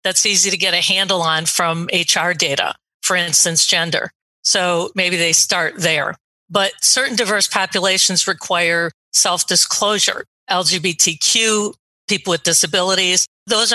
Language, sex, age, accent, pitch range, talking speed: English, female, 50-69, American, 170-195 Hz, 125 wpm